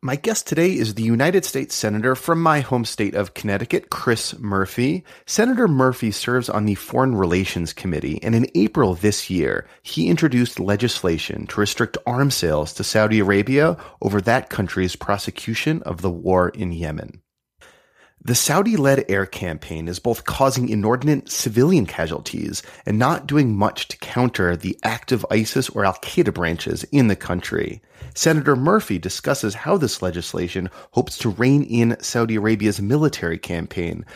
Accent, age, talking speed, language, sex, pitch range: American, 30-49, 155 wpm, English, male, 95-135 Hz